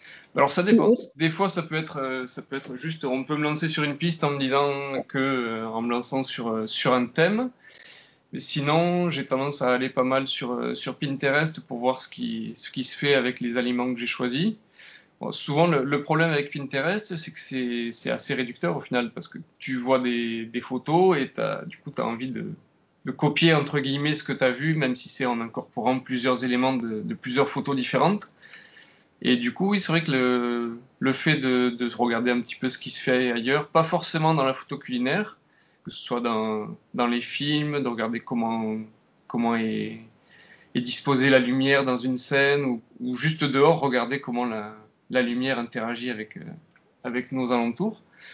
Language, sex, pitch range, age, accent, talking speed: French, male, 125-155 Hz, 20-39, French, 205 wpm